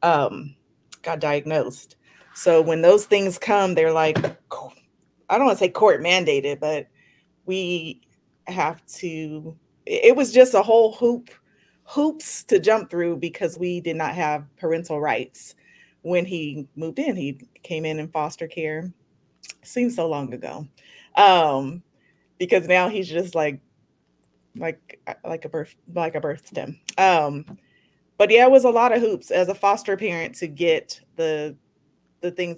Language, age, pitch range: English, 30-49, 155-195 Hz